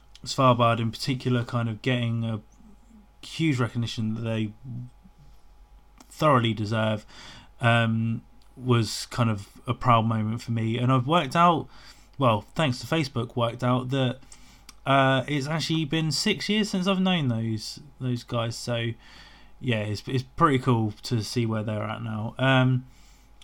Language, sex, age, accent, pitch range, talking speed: English, male, 20-39, British, 120-135 Hz, 150 wpm